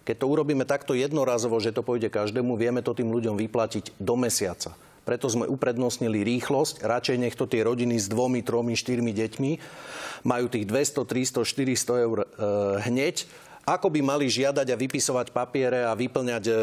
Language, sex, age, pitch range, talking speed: Slovak, male, 40-59, 110-135 Hz, 165 wpm